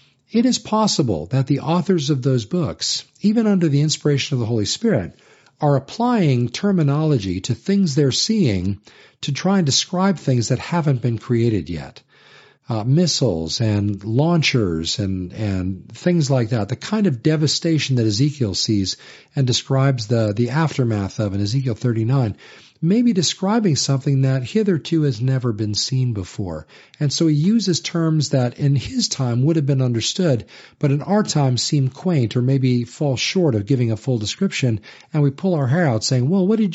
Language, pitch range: English, 115-160 Hz